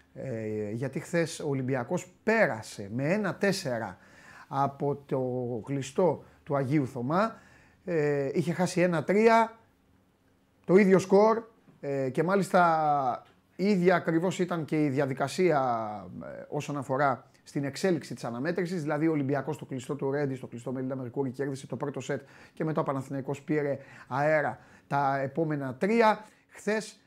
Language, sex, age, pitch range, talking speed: Greek, male, 30-49, 135-180 Hz, 135 wpm